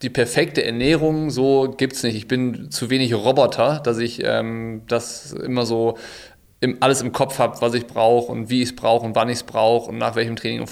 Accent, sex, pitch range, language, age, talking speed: German, male, 115-130 Hz, German, 20-39, 225 wpm